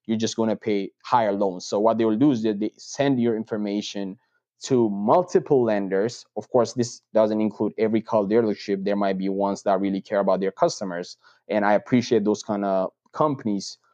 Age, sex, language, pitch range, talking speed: 20-39, male, English, 100-120 Hz, 190 wpm